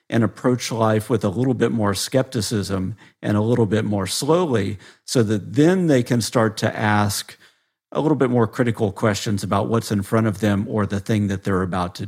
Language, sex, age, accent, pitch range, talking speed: English, male, 50-69, American, 105-125 Hz, 210 wpm